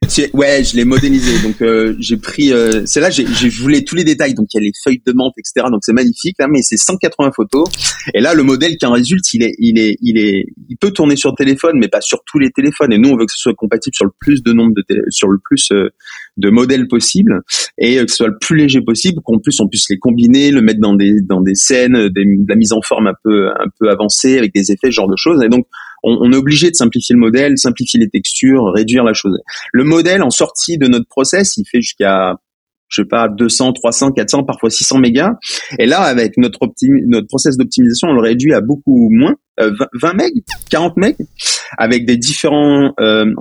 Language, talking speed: French, 245 wpm